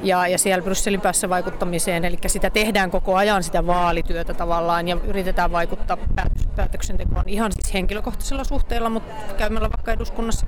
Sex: female